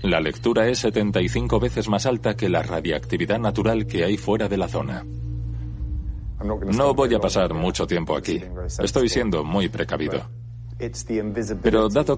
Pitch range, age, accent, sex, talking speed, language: 85-110 Hz, 40-59, Spanish, male, 150 wpm, Spanish